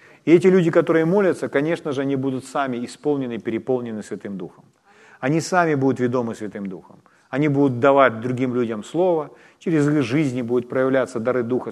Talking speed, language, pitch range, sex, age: 170 wpm, Ukrainian, 130-170 Hz, male, 40-59